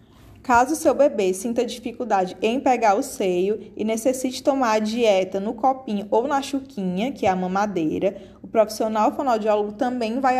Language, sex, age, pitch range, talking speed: Portuguese, female, 20-39, 205-260 Hz, 160 wpm